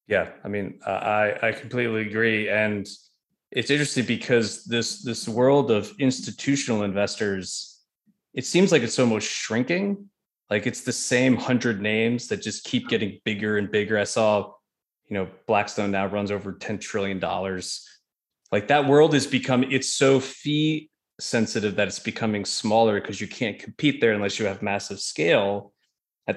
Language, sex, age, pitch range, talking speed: English, male, 20-39, 100-125 Hz, 165 wpm